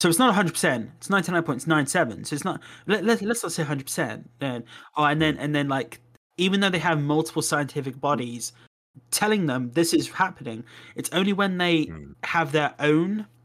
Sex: male